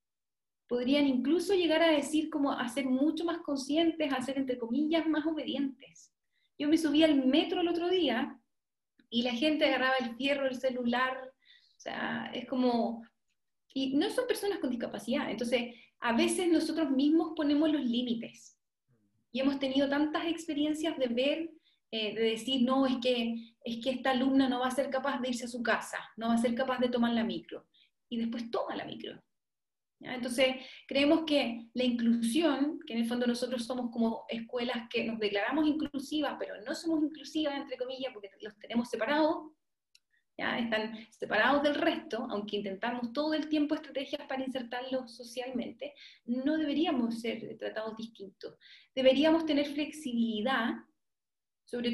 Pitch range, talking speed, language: 240-300 Hz, 165 wpm, Spanish